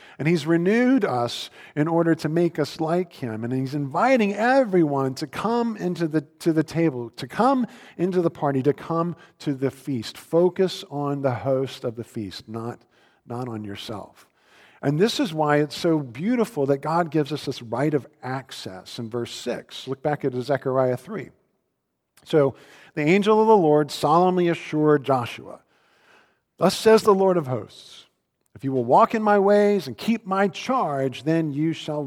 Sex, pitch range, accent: male, 120-170 Hz, American